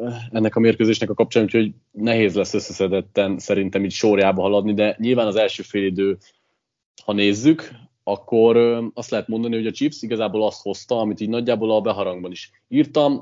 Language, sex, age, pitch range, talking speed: Hungarian, male, 30-49, 100-120 Hz, 170 wpm